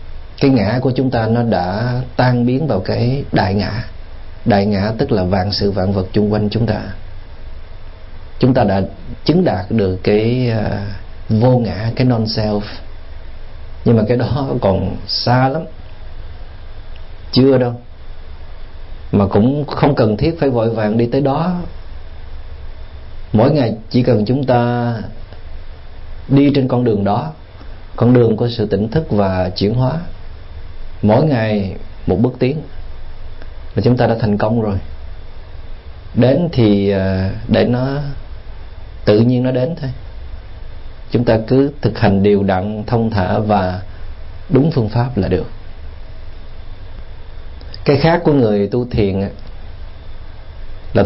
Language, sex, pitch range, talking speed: Vietnamese, male, 90-120 Hz, 140 wpm